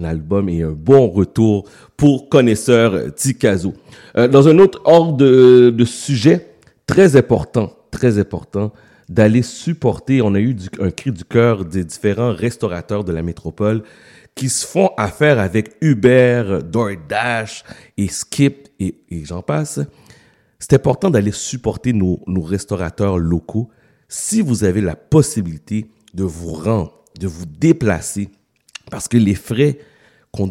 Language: French